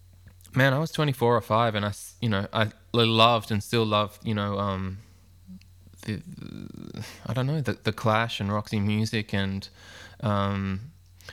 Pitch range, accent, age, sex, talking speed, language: 95-110 Hz, Australian, 20-39, male, 160 wpm, English